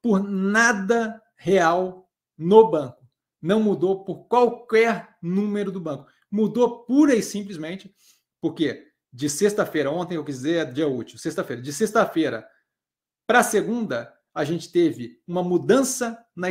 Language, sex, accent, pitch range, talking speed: Portuguese, male, Brazilian, 165-225 Hz, 130 wpm